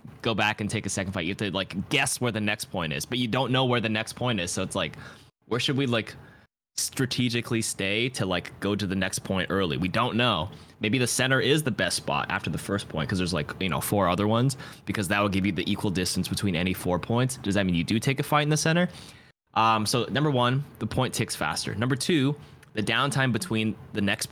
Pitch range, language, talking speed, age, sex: 100-130 Hz, English, 255 wpm, 20-39, male